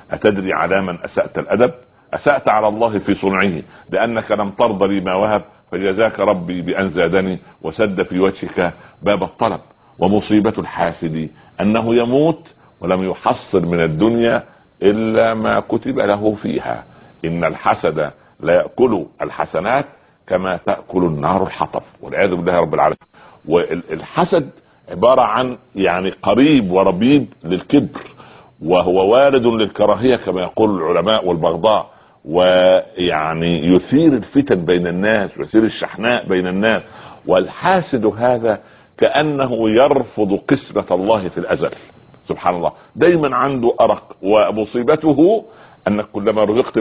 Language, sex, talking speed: Arabic, male, 115 wpm